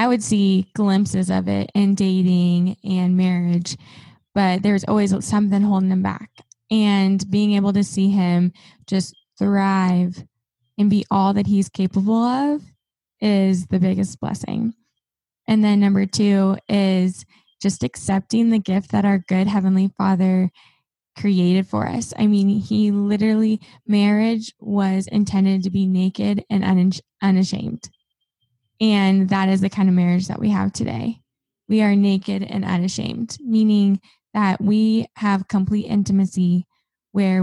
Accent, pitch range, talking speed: American, 185-205 Hz, 140 wpm